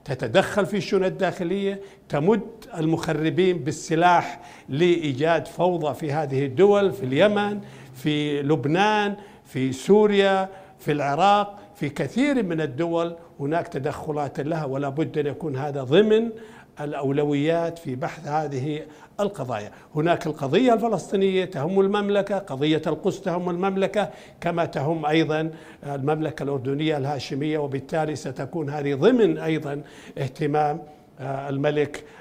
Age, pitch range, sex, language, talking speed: 60-79, 140-175 Hz, male, Arabic, 110 wpm